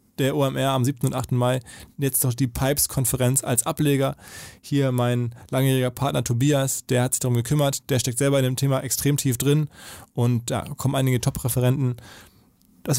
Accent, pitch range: German, 130-150 Hz